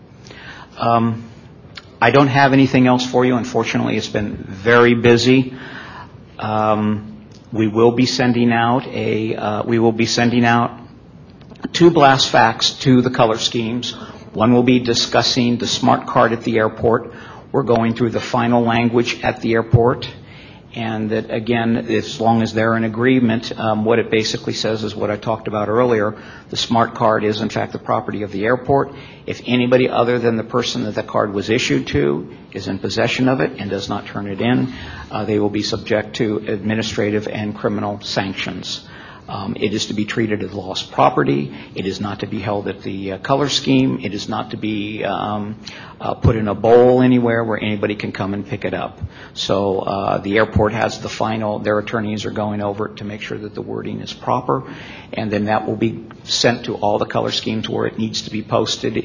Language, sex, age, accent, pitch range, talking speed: English, male, 50-69, American, 105-120 Hz, 195 wpm